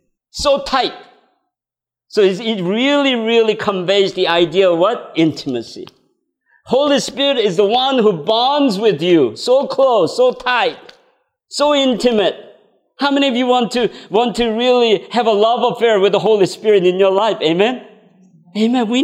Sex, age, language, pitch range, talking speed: male, 50-69, English, 175-255 Hz, 160 wpm